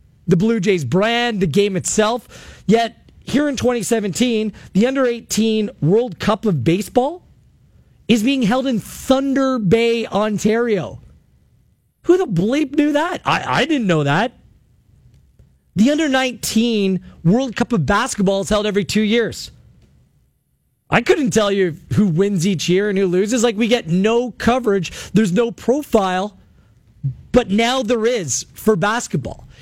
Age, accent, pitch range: 40-59, American, 190-235 Hz